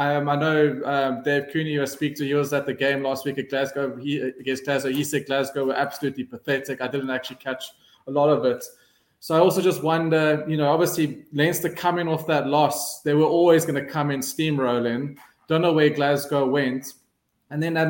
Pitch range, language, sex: 135-160 Hz, English, male